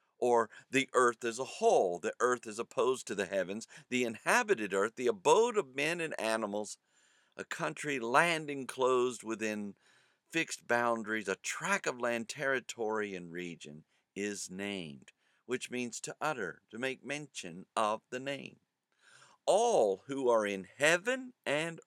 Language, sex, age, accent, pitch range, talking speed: English, male, 50-69, American, 100-145 Hz, 150 wpm